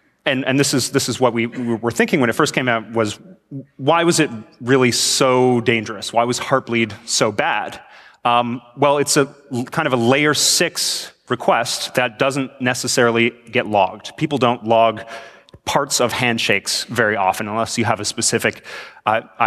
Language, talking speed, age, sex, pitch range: English, 175 wpm, 30-49, male, 115-135 Hz